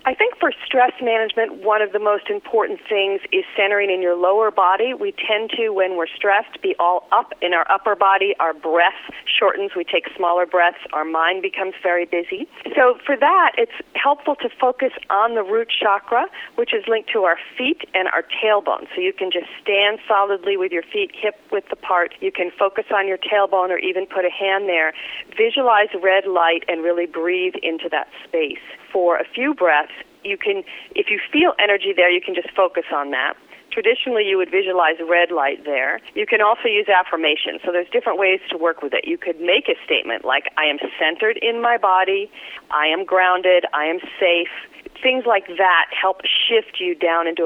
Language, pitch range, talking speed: English, 180-260 Hz, 200 wpm